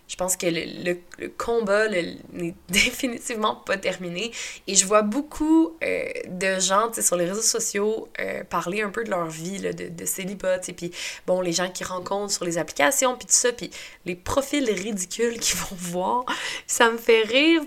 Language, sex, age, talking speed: French, female, 20-39, 205 wpm